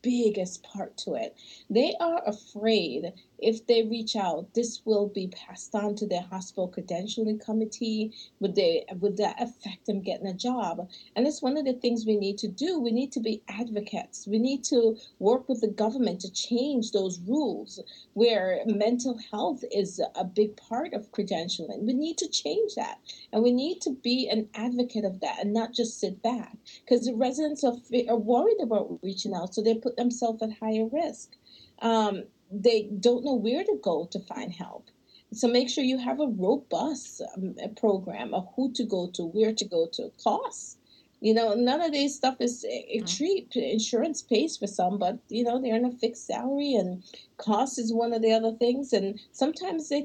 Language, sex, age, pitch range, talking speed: English, female, 40-59, 210-250 Hz, 190 wpm